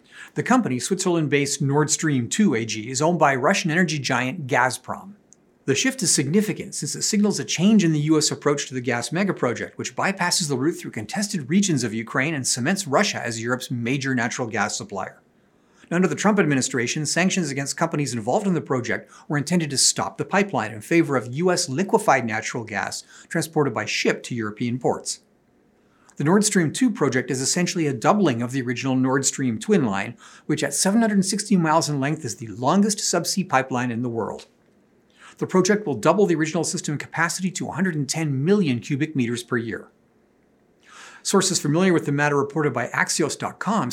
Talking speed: 180 wpm